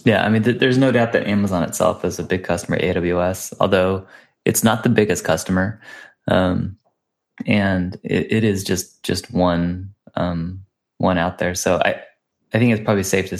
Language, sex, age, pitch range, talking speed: English, male, 20-39, 90-105 Hz, 185 wpm